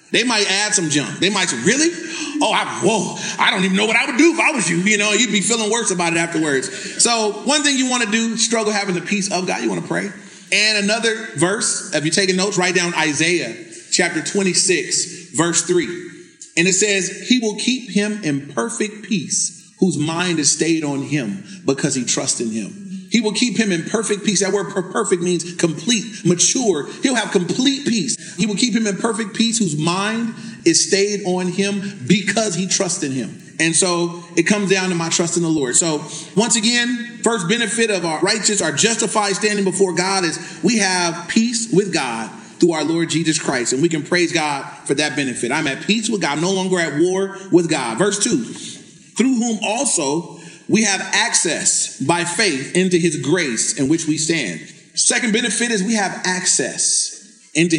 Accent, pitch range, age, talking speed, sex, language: American, 170-210 Hz, 30-49, 205 wpm, male, English